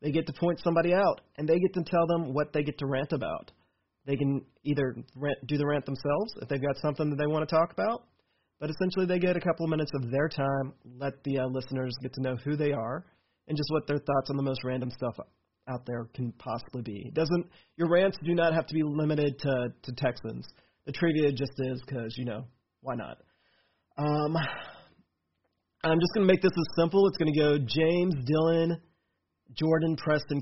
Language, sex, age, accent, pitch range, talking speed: English, male, 30-49, American, 130-165 Hz, 220 wpm